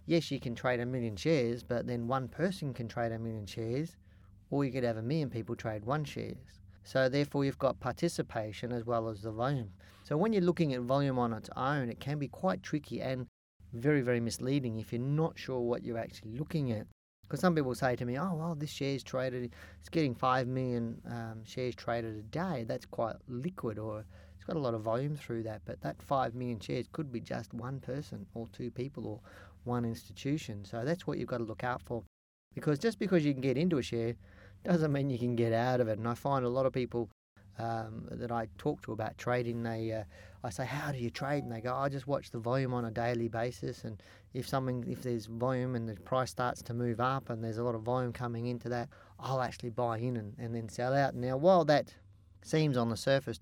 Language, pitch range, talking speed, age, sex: English, 115-135 Hz, 235 wpm, 30-49, male